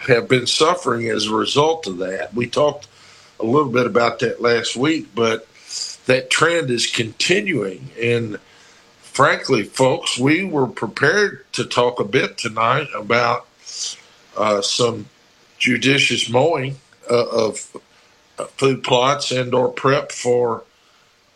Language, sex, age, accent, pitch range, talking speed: English, male, 50-69, American, 115-135 Hz, 130 wpm